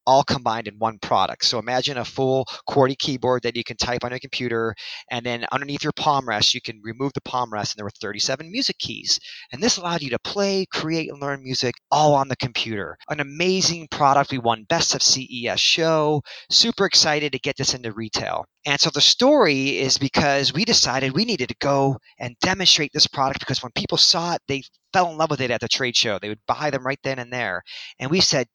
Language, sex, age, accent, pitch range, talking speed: English, male, 30-49, American, 125-160 Hz, 225 wpm